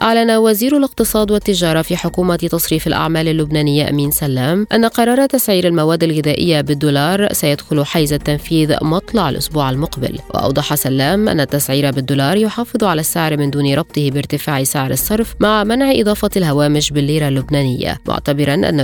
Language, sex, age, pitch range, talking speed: Arabic, female, 20-39, 145-200 Hz, 145 wpm